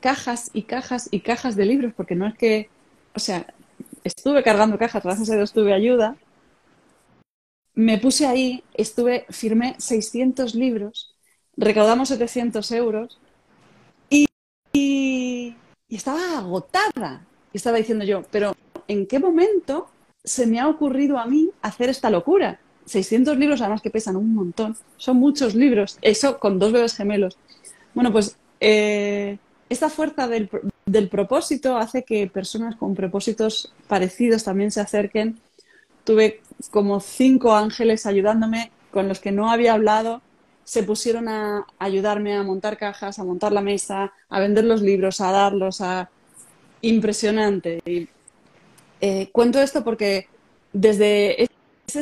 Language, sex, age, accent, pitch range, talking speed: Spanish, female, 30-49, Spanish, 205-250 Hz, 140 wpm